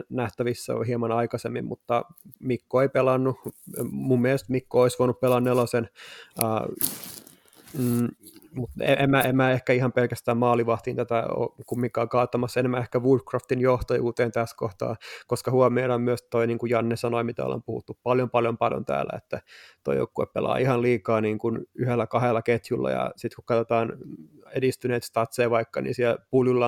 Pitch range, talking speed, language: 115-125 Hz, 160 wpm, Finnish